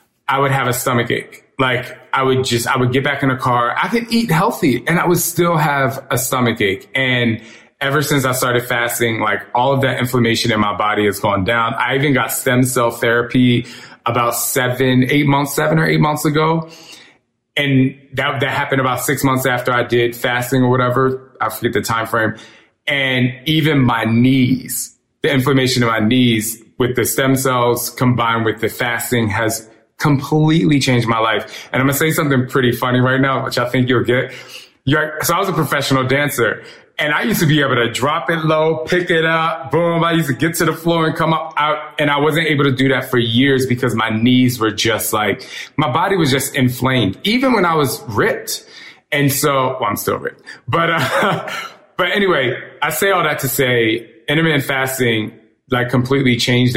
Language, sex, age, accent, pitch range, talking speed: English, male, 20-39, American, 120-150 Hz, 205 wpm